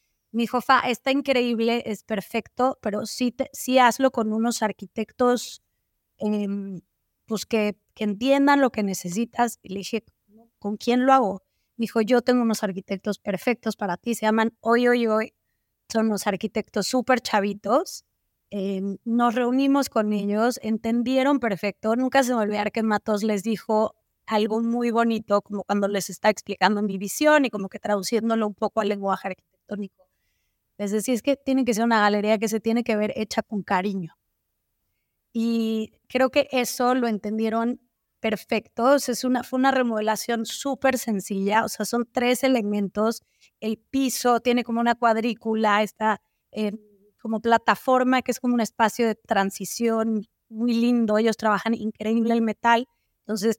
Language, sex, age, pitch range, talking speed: English, female, 20-39, 210-240 Hz, 160 wpm